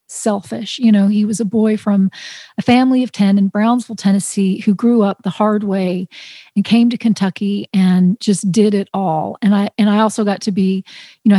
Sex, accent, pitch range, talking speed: female, American, 200-220 Hz, 210 wpm